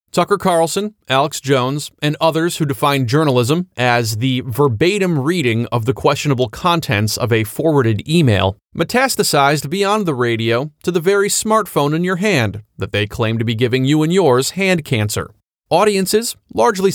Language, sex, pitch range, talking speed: English, male, 130-175 Hz, 160 wpm